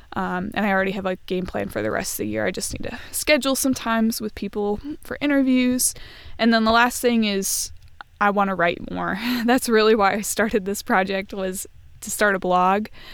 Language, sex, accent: English, female, American